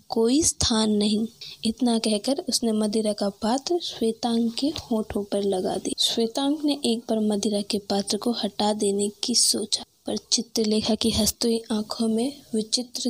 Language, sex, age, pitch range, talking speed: Hindi, female, 20-39, 210-245 Hz, 155 wpm